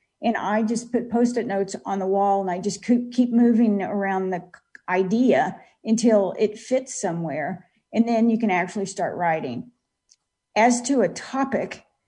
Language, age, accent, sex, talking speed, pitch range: English, 50-69, American, female, 160 wpm, 190-230 Hz